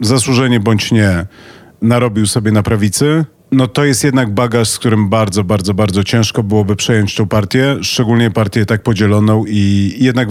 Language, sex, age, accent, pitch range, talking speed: Polish, male, 40-59, native, 105-125 Hz, 165 wpm